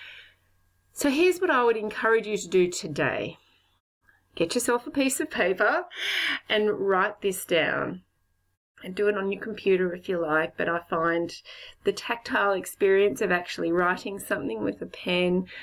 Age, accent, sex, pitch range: 30-49, Australian, female, 145-200 Hz